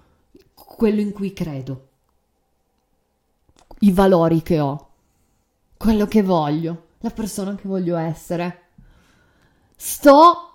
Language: Italian